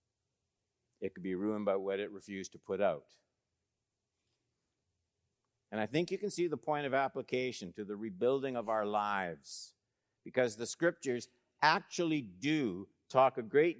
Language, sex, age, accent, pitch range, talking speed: English, male, 60-79, American, 105-135 Hz, 150 wpm